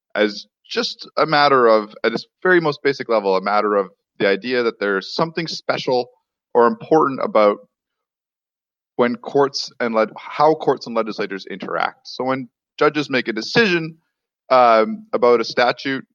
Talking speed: 155 wpm